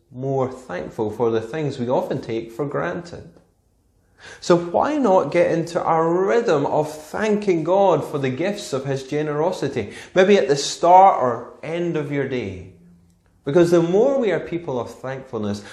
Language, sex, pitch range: English, male, 110-175 Hz